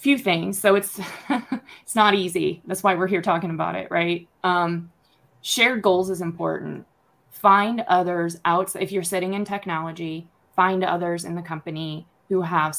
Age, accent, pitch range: 20-39, American, 155-185 Hz